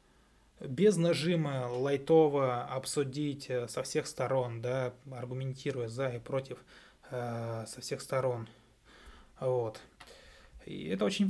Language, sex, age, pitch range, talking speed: Russian, male, 20-39, 120-145 Hz, 105 wpm